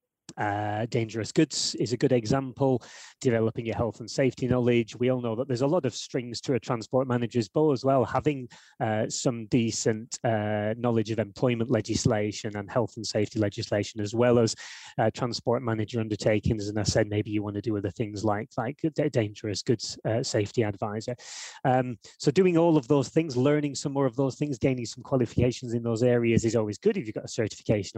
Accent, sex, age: British, male, 20-39